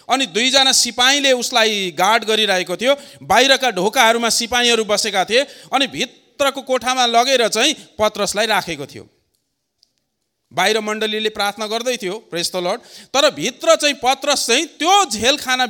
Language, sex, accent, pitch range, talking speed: English, male, Indian, 190-285 Hz, 135 wpm